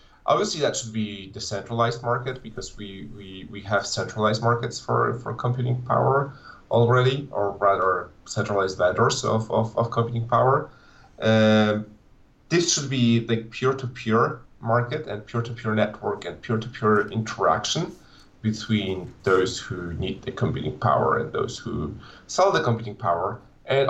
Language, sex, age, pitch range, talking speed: English, male, 30-49, 100-120 Hz, 140 wpm